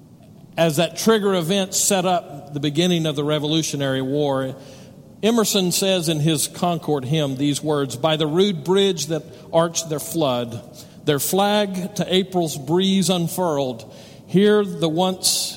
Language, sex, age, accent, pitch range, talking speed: English, male, 50-69, American, 150-190 Hz, 145 wpm